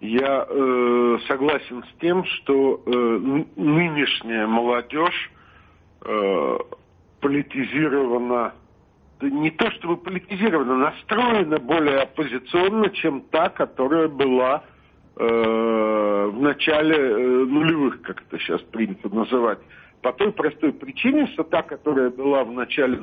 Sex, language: male, Russian